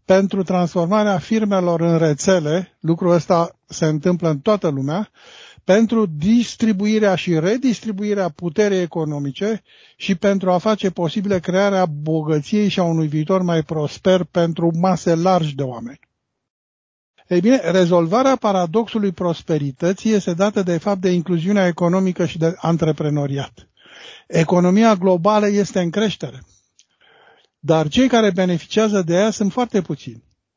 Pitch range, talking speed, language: 165-205 Hz, 130 wpm, Romanian